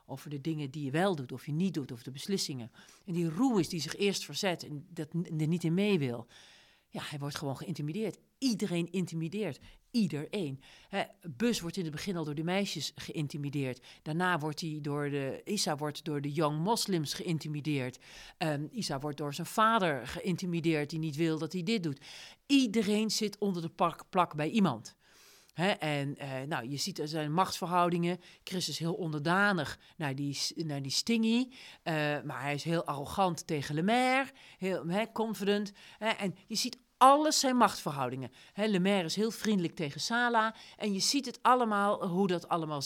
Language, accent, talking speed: Dutch, Dutch, 190 wpm